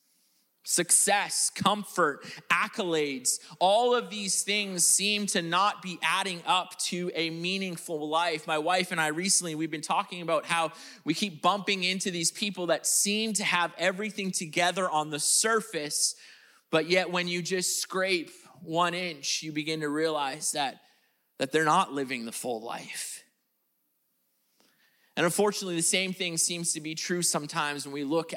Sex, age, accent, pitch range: male, 30-49, American, 155-185 Hz